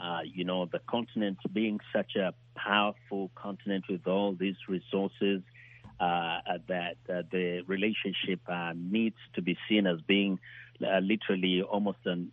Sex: male